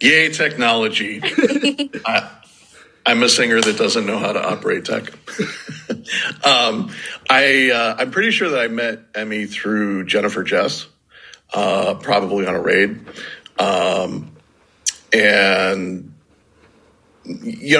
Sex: male